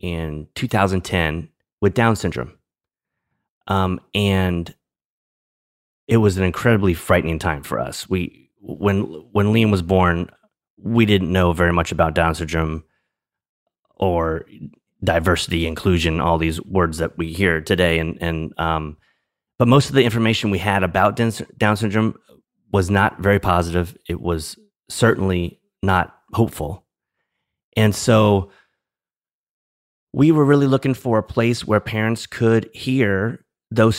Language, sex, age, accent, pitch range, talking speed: English, male, 30-49, American, 85-110 Hz, 130 wpm